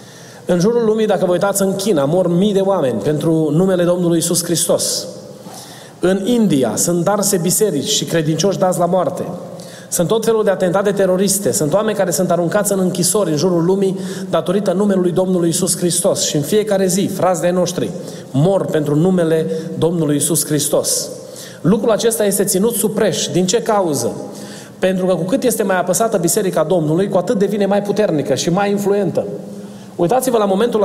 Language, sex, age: Romanian, male, 30-49